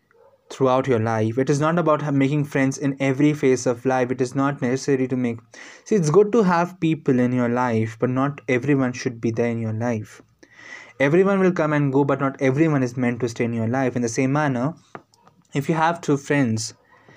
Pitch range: 125-155 Hz